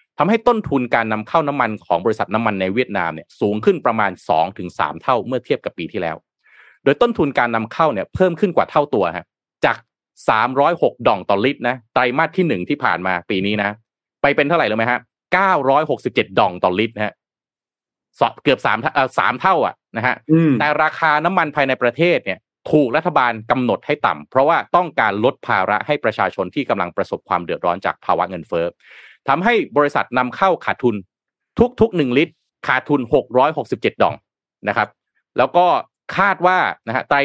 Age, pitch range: 30-49, 110-170 Hz